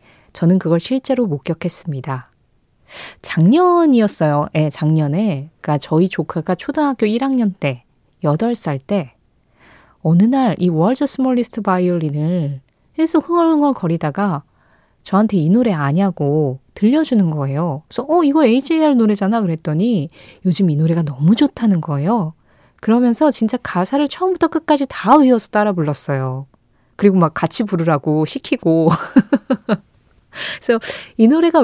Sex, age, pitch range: female, 20-39, 160-245 Hz